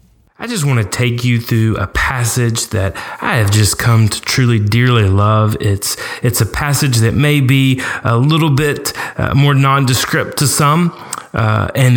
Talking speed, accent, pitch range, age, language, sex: 175 wpm, American, 110-150 Hz, 30-49, English, male